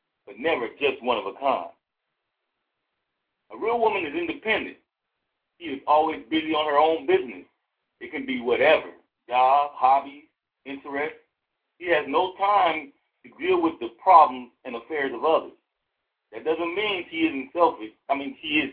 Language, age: English, 50-69